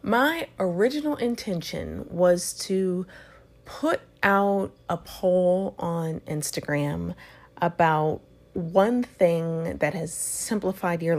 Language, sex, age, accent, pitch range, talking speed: English, female, 30-49, American, 160-200 Hz, 95 wpm